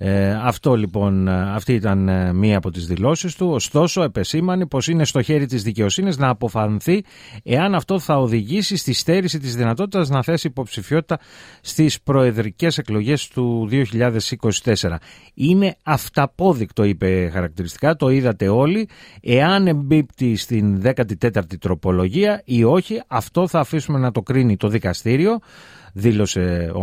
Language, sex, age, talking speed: Greek, male, 30-49, 135 wpm